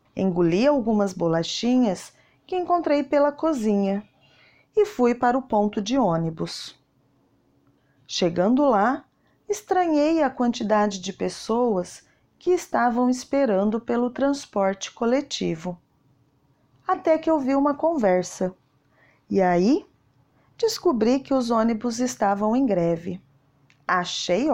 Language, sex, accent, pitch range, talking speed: Portuguese, female, Brazilian, 175-280 Hz, 105 wpm